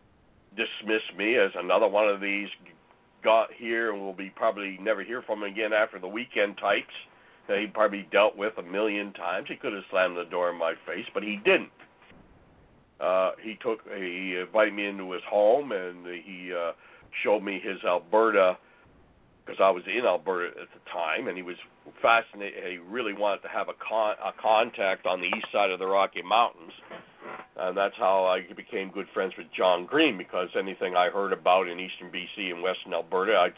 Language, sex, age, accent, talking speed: English, male, 60-79, American, 195 wpm